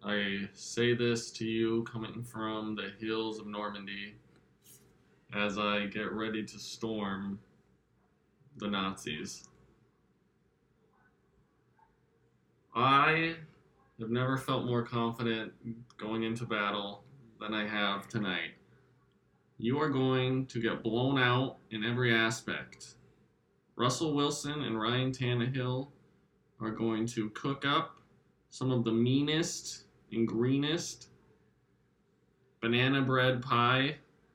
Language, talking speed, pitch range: English, 105 wpm, 110-130 Hz